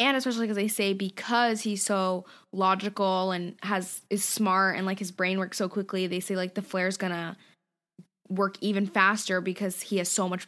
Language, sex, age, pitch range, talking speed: English, female, 10-29, 190-225 Hz, 195 wpm